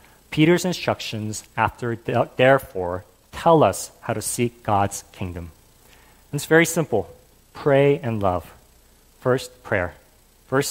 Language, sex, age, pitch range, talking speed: English, male, 40-59, 110-155 Hz, 120 wpm